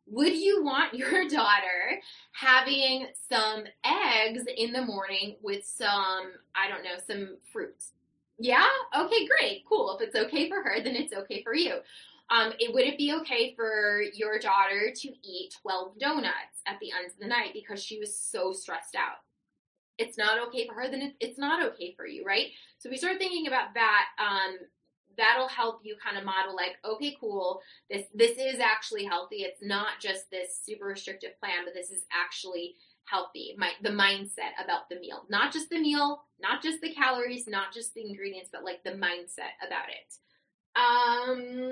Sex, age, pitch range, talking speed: female, 20-39, 195-270 Hz, 185 wpm